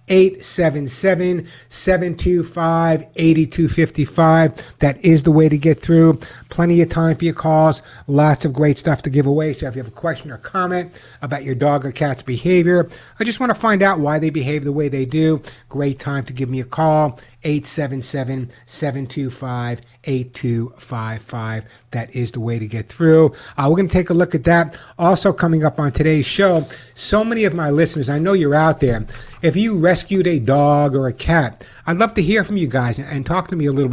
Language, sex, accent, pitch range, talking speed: English, male, American, 130-160 Hz, 200 wpm